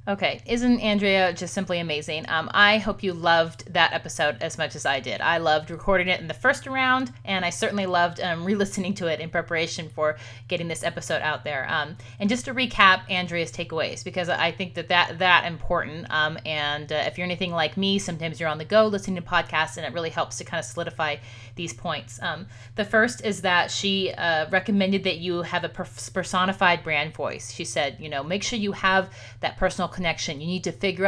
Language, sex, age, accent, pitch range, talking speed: English, female, 30-49, American, 160-195 Hz, 220 wpm